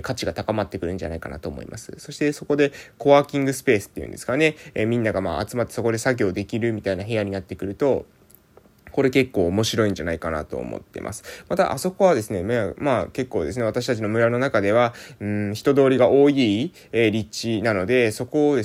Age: 20-39